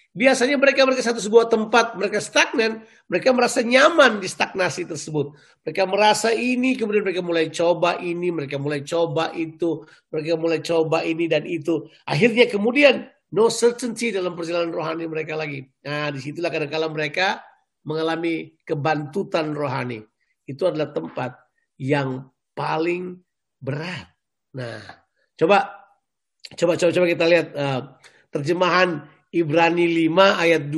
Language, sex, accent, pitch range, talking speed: Indonesian, male, native, 150-180 Hz, 125 wpm